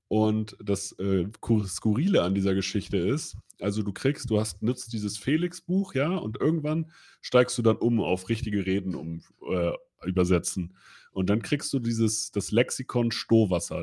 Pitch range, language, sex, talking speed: 105-135 Hz, German, male, 160 wpm